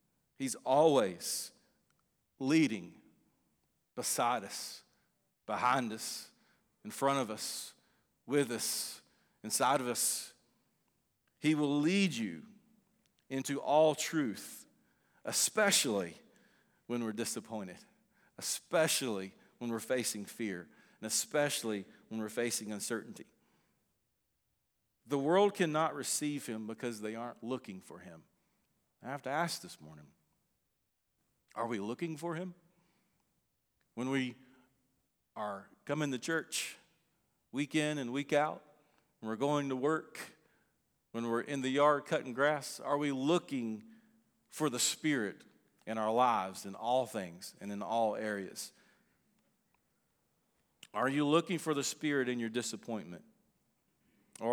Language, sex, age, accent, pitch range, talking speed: English, male, 40-59, American, 115-155 Hz, 120 wpm